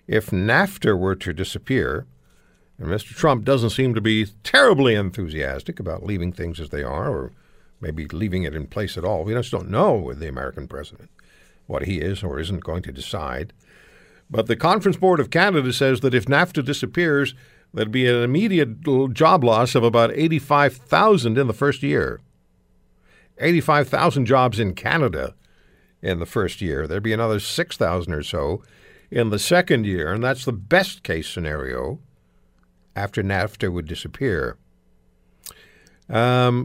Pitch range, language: 90-135 Hz, English